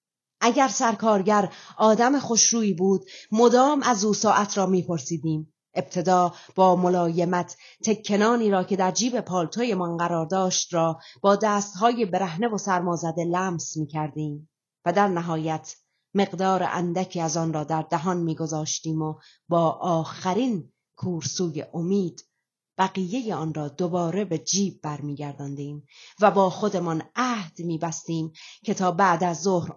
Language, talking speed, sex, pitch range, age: Persian, 135 wpm, female, 165-220 Hz, 30-49